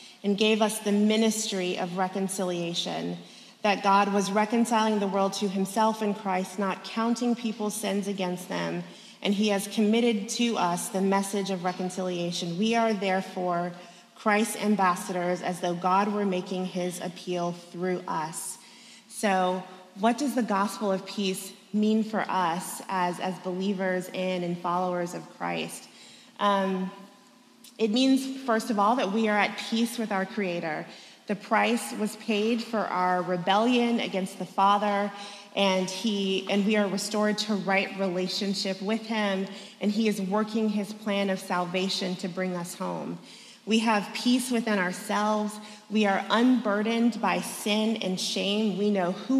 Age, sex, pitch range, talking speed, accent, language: 30-49, female, 185-215 Hz, 155 wpm, American, English